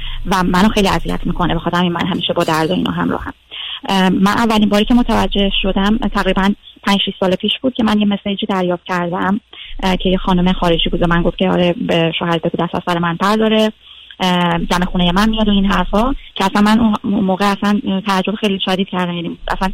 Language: Persian